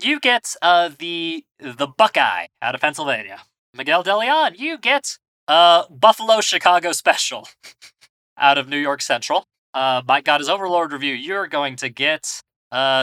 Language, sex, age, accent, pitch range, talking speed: English, male, 20-39, American, 135-195 Hz, 160 wpm